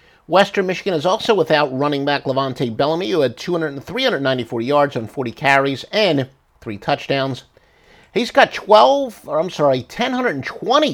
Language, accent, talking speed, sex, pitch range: English, American, 145 wpm, male, 135-205 Hz